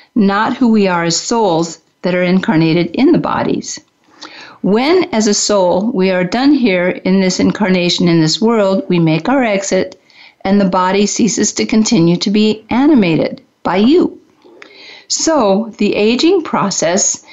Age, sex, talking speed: 50-69, female, 155 wpm